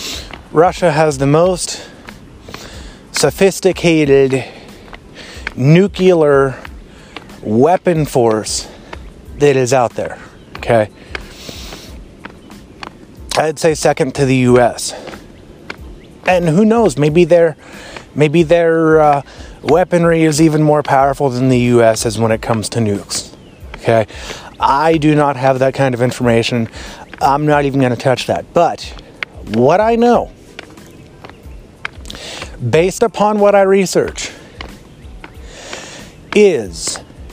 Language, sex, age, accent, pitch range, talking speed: English, male, 30-49, American, 120-170 Hz, 105 wpm